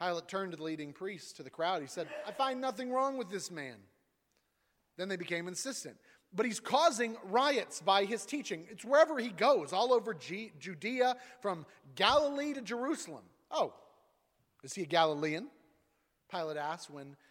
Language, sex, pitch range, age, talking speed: English, male, 145-205 Hz, 30-49, 165 wpm